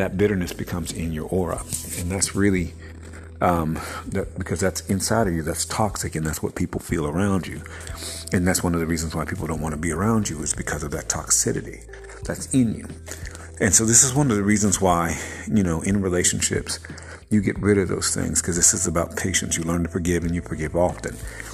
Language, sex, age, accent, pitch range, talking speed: English, male, 50-69, American, 80-95 Hz, 220 wpm